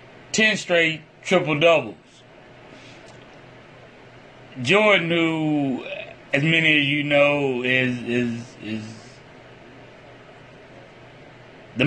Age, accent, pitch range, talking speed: 30-49, American, 130-160 Hz, 70 wpm